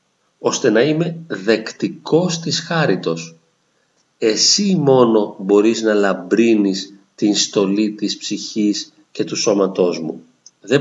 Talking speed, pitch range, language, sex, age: 110 wpm, 100-165 Hz, Greek, male, 40-59